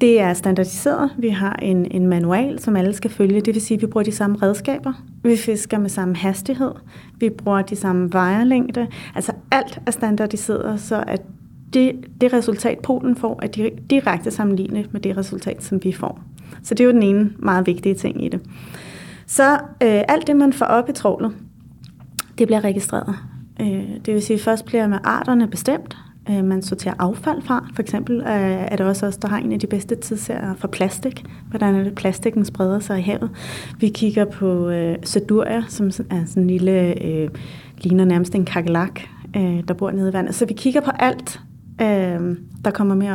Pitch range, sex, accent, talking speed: 190-230 Hz, female, native, 190 wpm